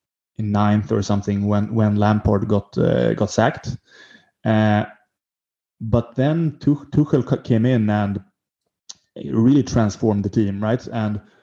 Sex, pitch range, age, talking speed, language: male, 105-120 Hz, 20-39, 125 wpm, English